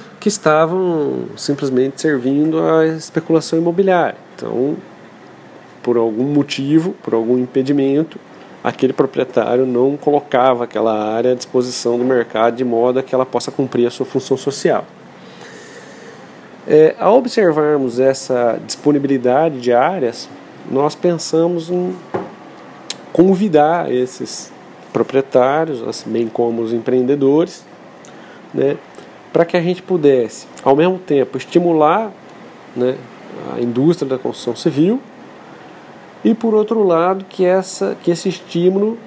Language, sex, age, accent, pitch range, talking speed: Portuguese, male, 40-59, Brazilian, 130-185 Hz, 120 wpm